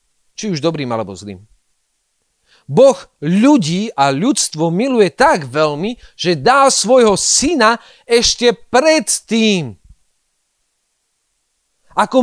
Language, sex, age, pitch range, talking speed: Slovak, male, 40-59, 155-240 Hz, 95 wpm